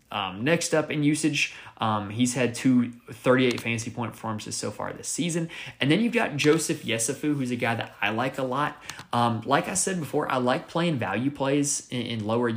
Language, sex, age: English, male, 20-39